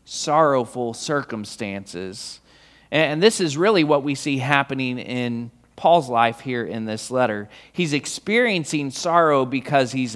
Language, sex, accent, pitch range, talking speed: English, male, American, 125-175 Hz, 130 wpm